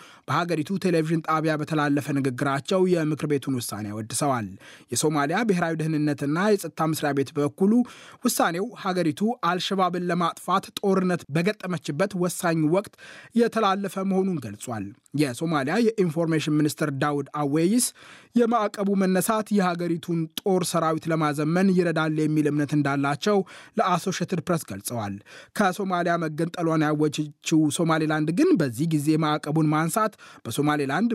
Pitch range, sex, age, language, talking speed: 150-185 Hz, male, 20-39, Amharic, 110 wpm